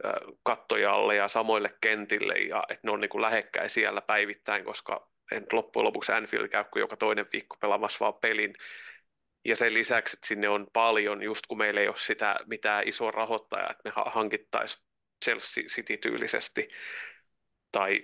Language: Finnish